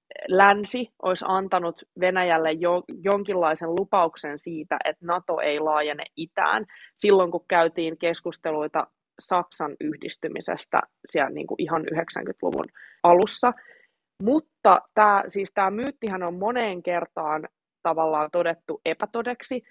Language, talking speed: Finnish, 95 wpm